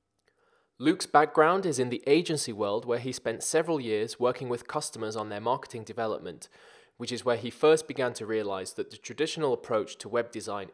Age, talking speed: 20-39, 190 wpm